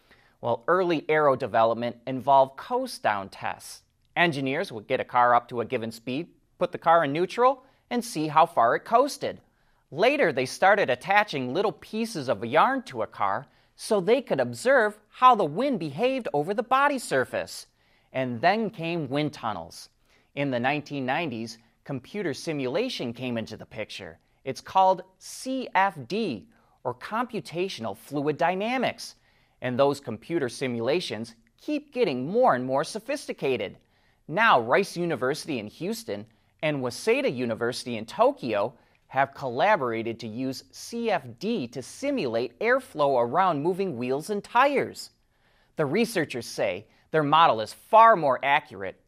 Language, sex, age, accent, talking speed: English, male, 30-49, American, 140 wpm